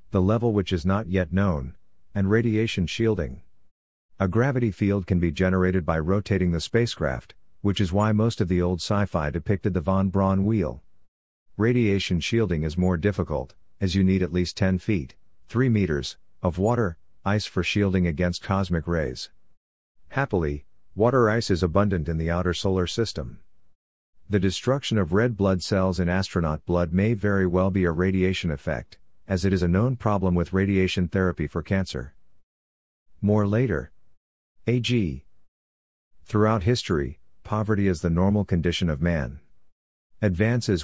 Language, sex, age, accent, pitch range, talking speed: English, male, 50-69, American, 85-105 Hz, 150 wpm